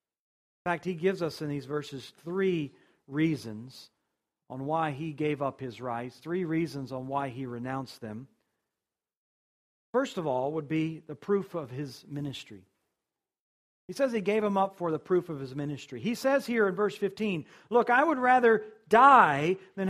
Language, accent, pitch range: English, American, 155-240 Hz